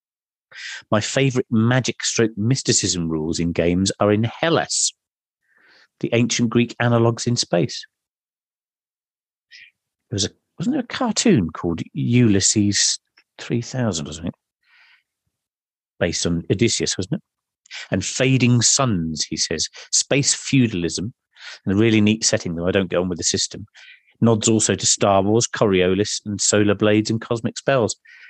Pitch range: 95-120 Hz